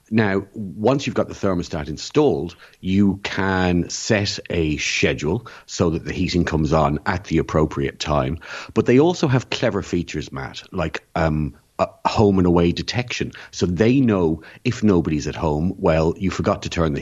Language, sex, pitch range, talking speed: English, male, 80-100 Hz, 175 wpm